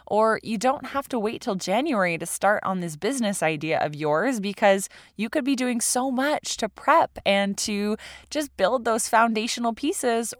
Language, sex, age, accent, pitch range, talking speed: English, female, 20-39, American, 155-225 Hz, 185 wpm